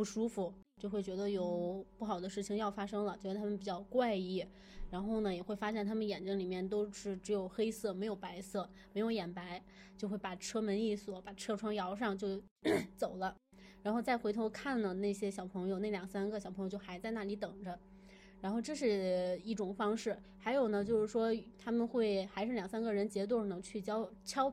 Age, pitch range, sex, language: 20-39, 195-220 Hz, female, Chinese